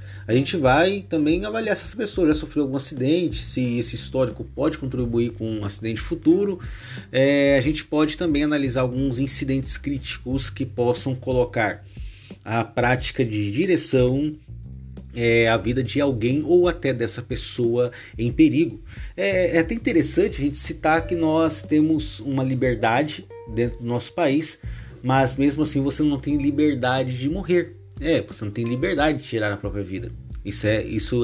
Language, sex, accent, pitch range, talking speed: Portuguese, male, Brazilian, 110-140 Hz, 160 wpm